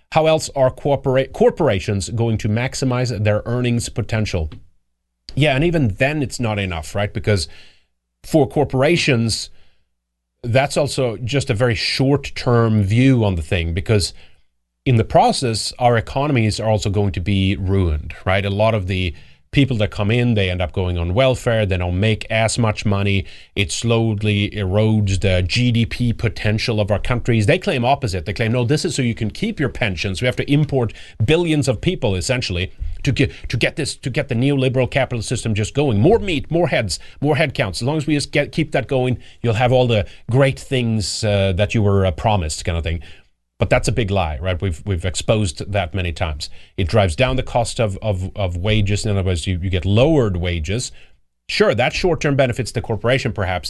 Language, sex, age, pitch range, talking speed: English, male, 30-49, 95-130 Hz, 195 wpm